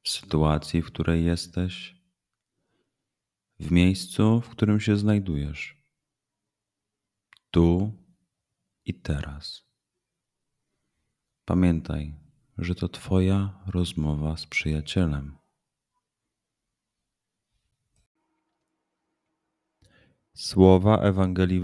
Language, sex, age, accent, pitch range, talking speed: Polish, male, 30-49, native, 80-100 Hz, 65 wpm